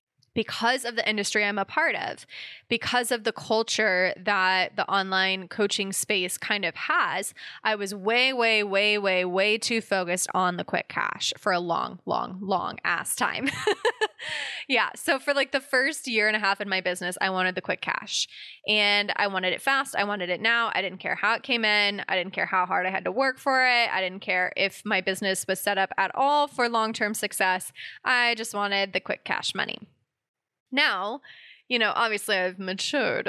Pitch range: 185-230 Hz